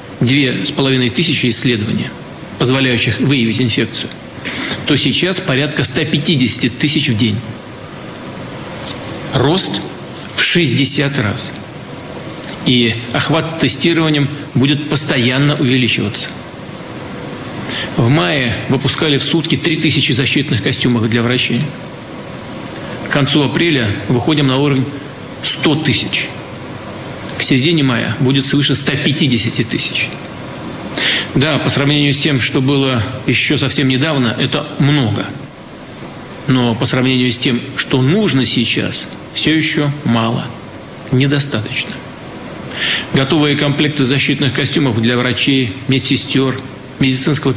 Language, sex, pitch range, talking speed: Russian, male, 125-145 Hz, 100 wpm